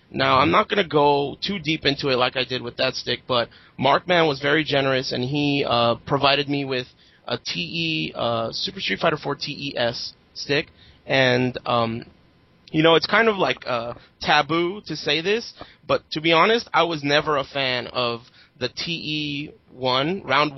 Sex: male